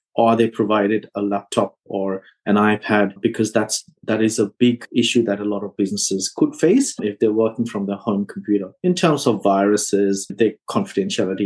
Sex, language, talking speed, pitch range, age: male, English, 180 wpm, 105-130 Hz, 30-49